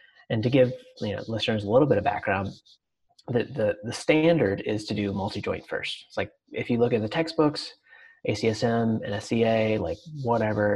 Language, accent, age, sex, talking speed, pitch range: English, American, 30-49, male, 185 wpm, 105-140 Hz